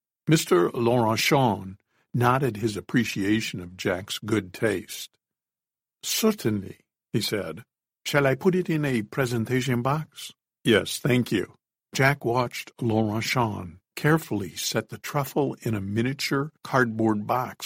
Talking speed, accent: 120 wpm, American